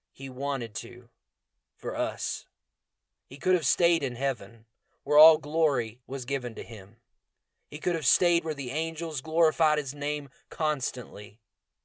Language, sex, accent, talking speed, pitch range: English, male, American, 145 wpm, 115-140 Hz